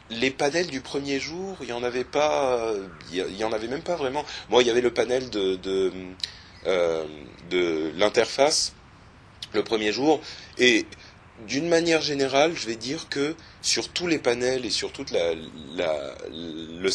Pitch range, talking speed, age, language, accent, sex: 90-140 Hz, 175 wpm, 30-49, French, French, male